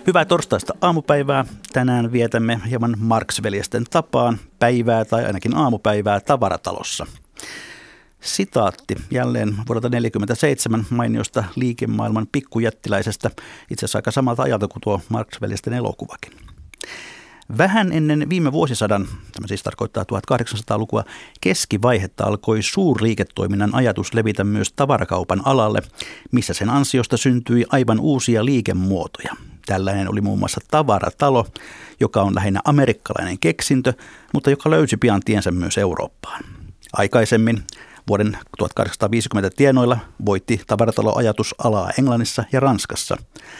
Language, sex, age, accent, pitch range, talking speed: Finnish, male, 50-69, native, 105-125 Hz, 105 wpm